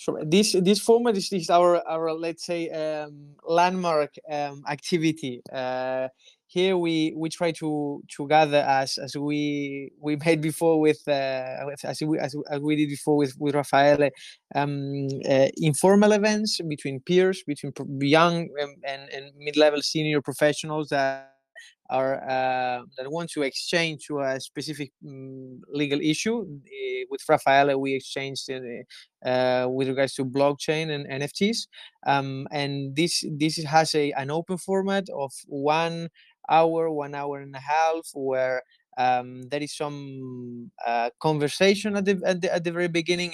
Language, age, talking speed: Italian, 20-39, 155 wpm